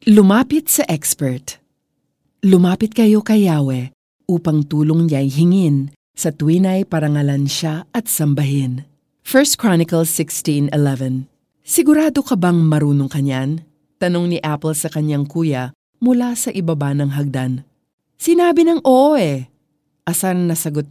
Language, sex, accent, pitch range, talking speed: Filipino, female, native, 145-210 Hz, 125 wpm